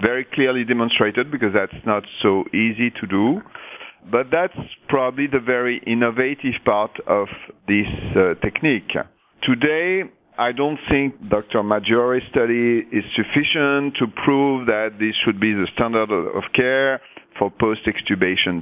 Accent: French